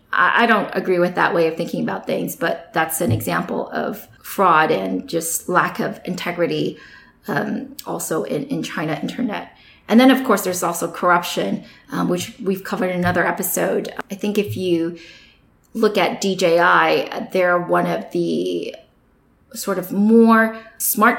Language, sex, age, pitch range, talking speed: English, female, 30-49, 170-210 Hz, 160 wpm